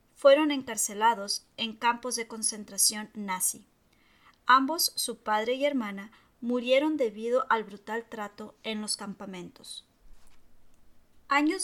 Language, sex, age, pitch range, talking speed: Spanish, female, 30-49, 205-260 Hz, 110 wpm